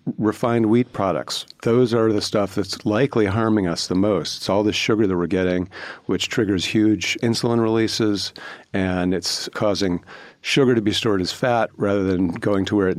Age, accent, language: 50-69, American, English